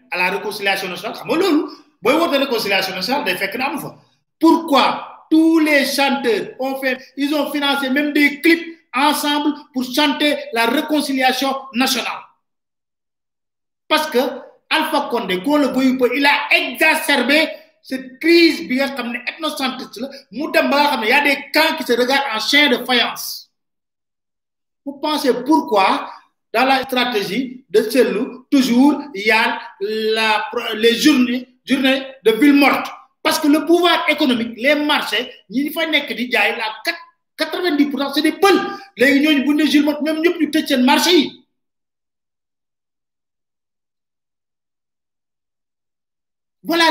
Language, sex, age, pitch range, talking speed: French, male, 50-69, 245-305 Hz, 125 wpm